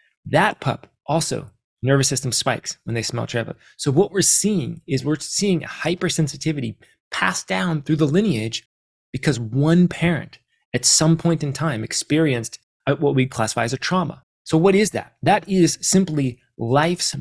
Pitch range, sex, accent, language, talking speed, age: 125-165 Hz, male, American, English, 165 wpm, 30-49